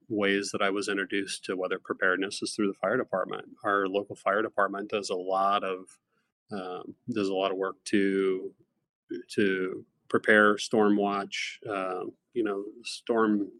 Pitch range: 100-110 Hz